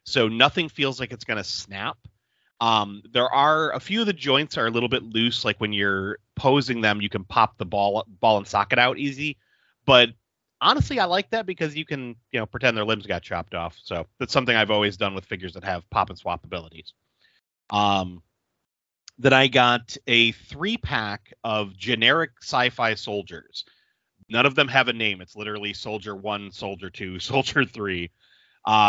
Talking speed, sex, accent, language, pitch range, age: 190 wpm, male, American, English, 100-130 Hz, 30-49